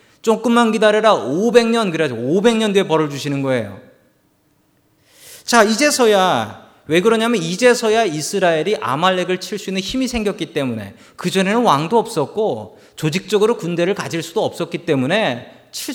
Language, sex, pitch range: Korean, male, 145-220 Hz